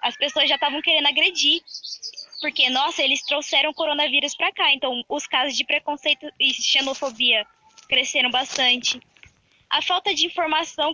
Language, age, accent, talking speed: Portuguese, 10-29, Brazilian, 150 wpm